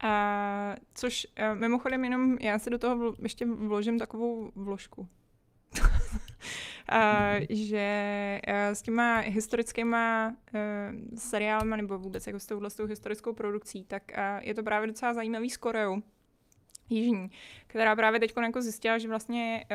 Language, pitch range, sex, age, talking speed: Czech, 205-230 Hz, female, 20-39, 135 wpm